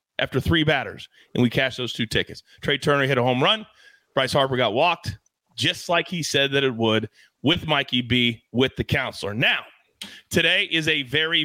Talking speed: 195 wpm